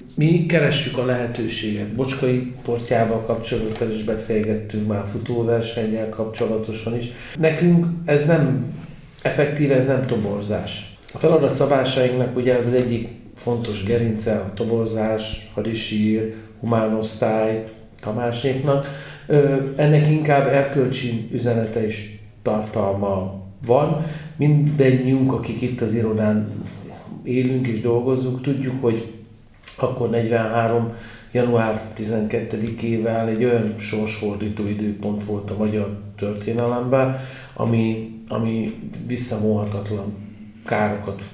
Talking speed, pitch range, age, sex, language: 95 wpm, 105-125 Hz, 40-59, male, Hungarian